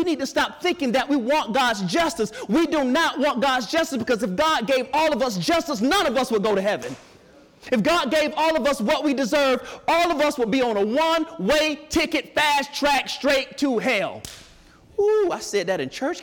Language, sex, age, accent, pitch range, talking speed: English, male, 30-49, American, 235-315 Hz, 220 wpm